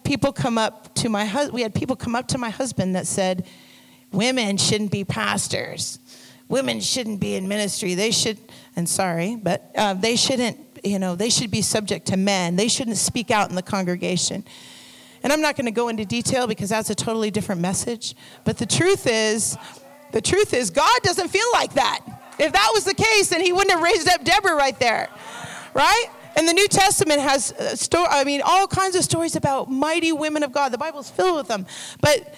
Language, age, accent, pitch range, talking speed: English, 40-59, American, 200-300 Hz, 210 wpm